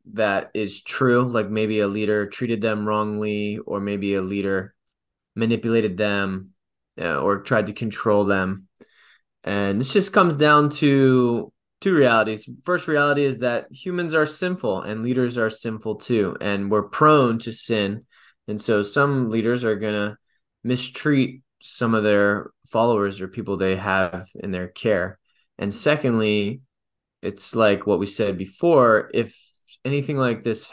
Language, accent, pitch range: English, American, 105-130 Hz